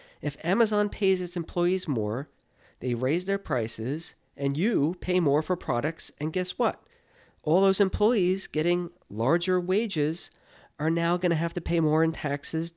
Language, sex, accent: English, male, American